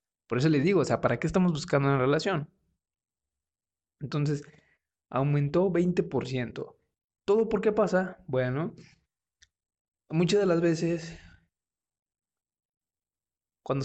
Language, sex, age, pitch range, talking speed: Spanish, male, 20-39, 120-165 Hz, 110 wpm